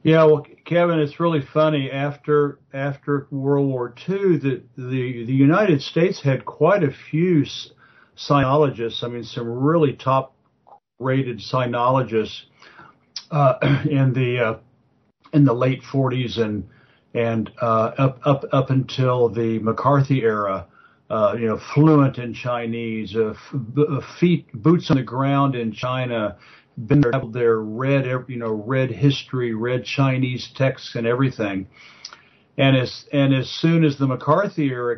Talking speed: 140 wpm